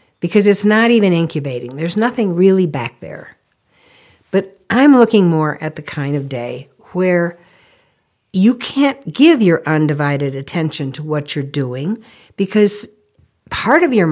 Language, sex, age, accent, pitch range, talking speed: English, female, 60-79, American, 150-220 Hz, 145 wpm